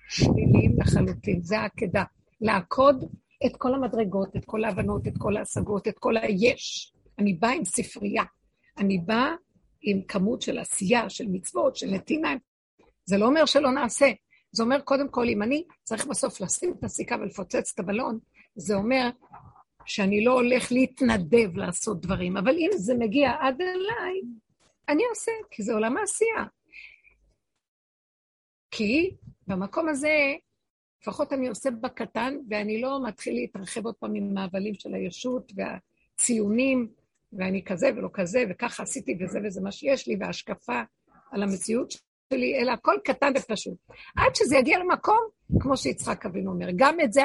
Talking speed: 145 wpm